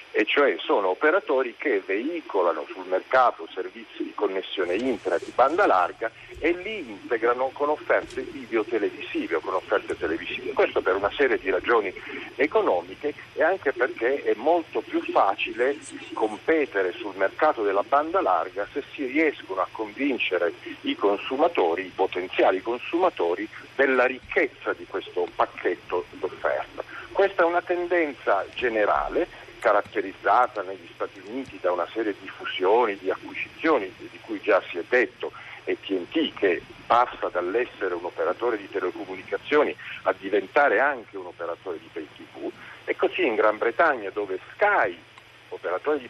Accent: native